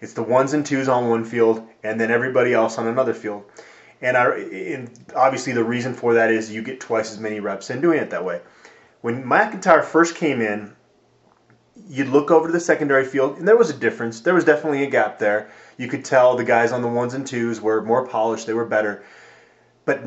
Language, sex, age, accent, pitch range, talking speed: English, male, 20-39, American, 115-145 Hz, 225 wpm